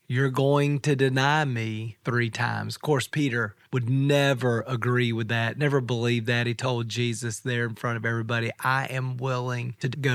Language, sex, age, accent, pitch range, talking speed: English, male, 40-59, American, 115-140 Hz, 185 wpm